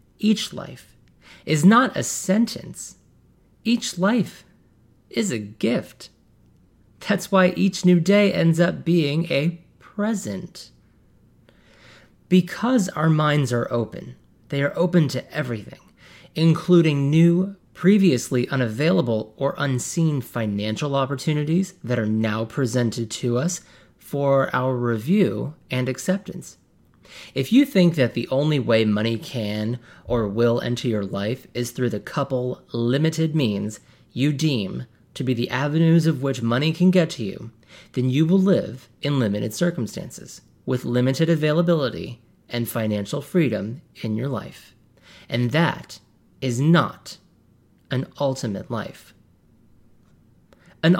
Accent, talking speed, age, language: American, 125 wpm, 30-49, English